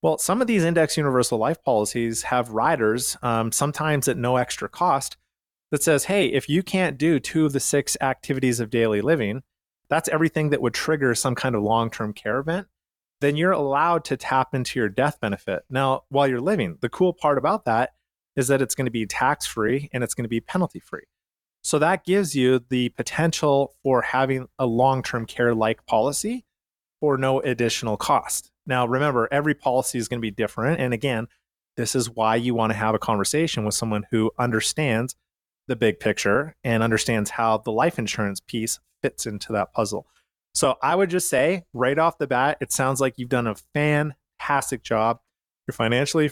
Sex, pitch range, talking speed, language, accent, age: male, 115-150 Hz, 190 wpm, English, American, 30-49